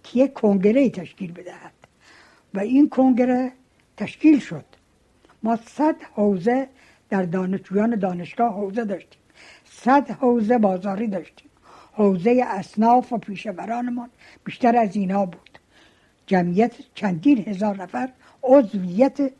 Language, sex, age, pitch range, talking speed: Persian, female, 60-79, 185-235 Hz, 110 wpm